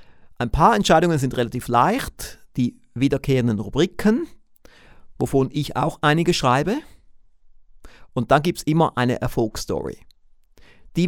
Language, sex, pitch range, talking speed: German, male, 120-155 Hz, 120 wpm